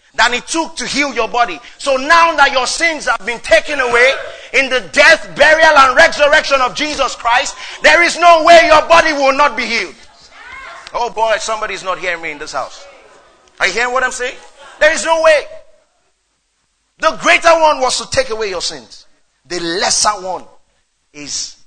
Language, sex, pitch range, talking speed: English, male, 165-275 Hz, 190 wpm